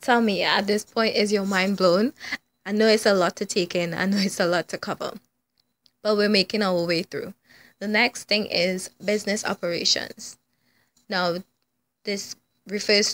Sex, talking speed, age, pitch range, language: female, 180 wpm, 20-39, 180-210 Hz, English